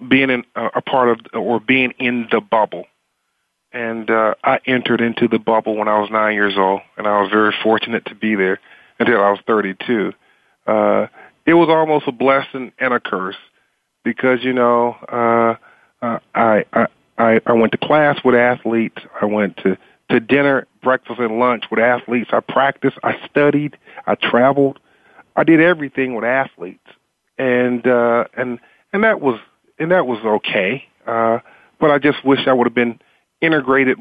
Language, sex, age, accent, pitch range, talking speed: English, male, 40-59, American, 115-130 Hz, 175 wpm